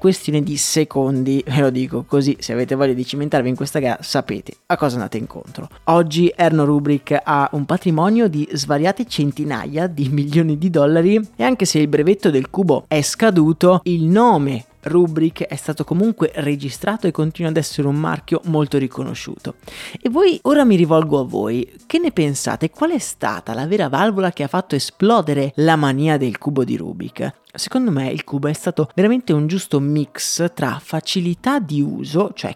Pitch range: 145-195 Hz